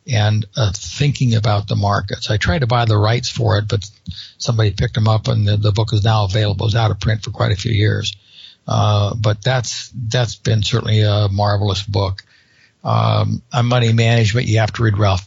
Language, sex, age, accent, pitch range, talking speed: English, male, 60-79, American, 105-125 Hz, 210 wpm